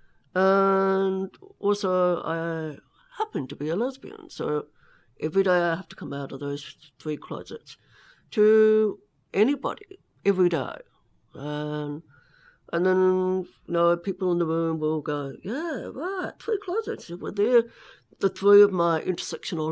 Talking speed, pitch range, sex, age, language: 145 wpm, 150-195 Hz, female, 60-79, English